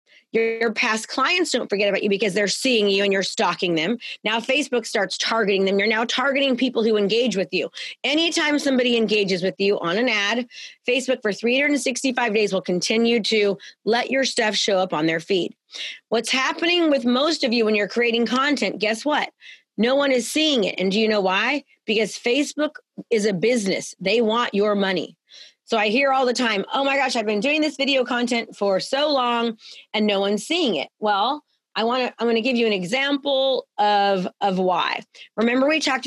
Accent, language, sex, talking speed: American, English, female, 200 wpm